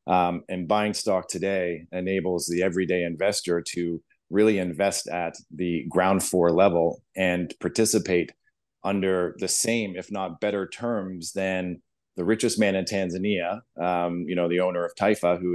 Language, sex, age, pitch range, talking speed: English, male, 30-49, 85-95 Hz, 155 wpm